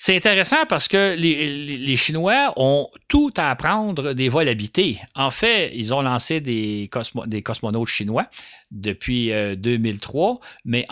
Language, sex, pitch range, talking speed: French, male, 110-155 Hz, 160 wpm